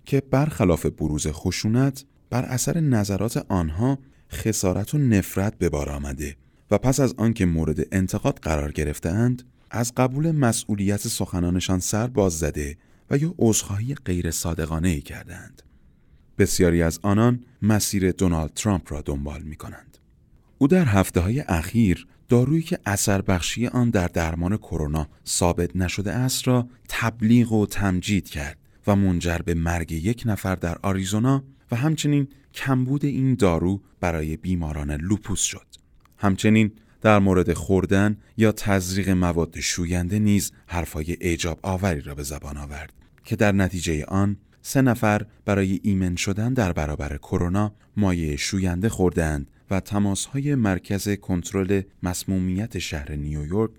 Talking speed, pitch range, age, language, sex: 135 wpm, 85-110 Hz, 30-49, Persian, male